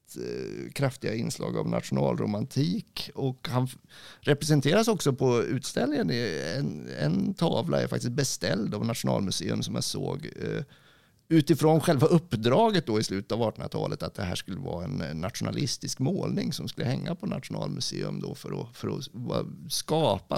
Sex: male